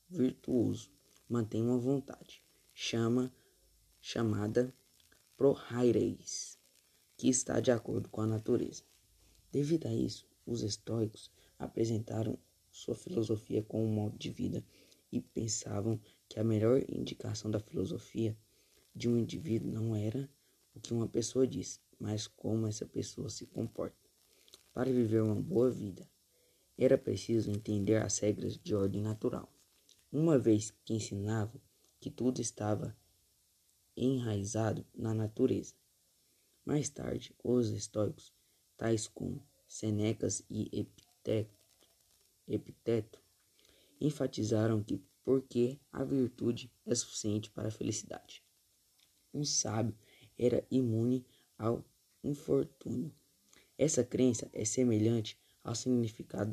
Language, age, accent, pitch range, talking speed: Portuguese, 20-39, Brazilian, 105-125 Hz, 115 wpm